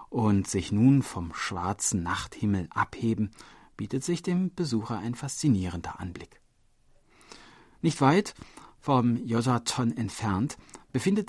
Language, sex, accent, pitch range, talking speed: German, male, German, 100-135 Hz, 105 wpm